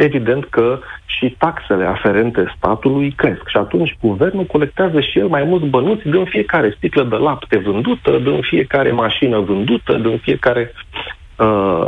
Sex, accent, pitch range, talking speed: male, native, 100-135 Hz, 140 wpm